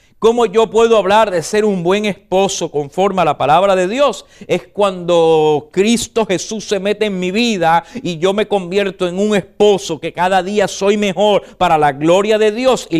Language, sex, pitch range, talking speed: English, male, 150-205 Hz, 195 wpm